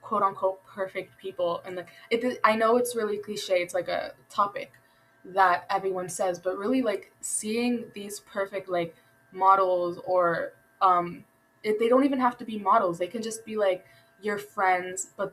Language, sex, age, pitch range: English, female, 20-39, 180-215 Hz